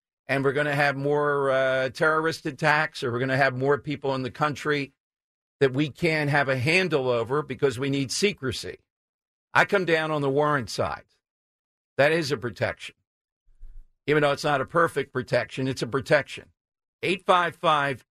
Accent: American